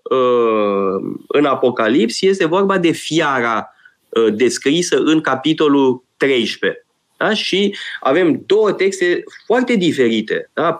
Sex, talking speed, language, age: male, 100 wpm, Romanian, 20-39